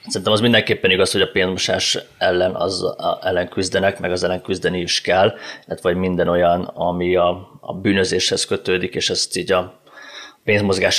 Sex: male